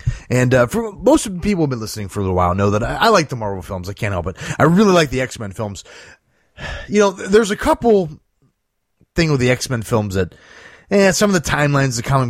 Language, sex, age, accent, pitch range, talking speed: English, male, 30-49, American, 100-145 Hz, 260 wpm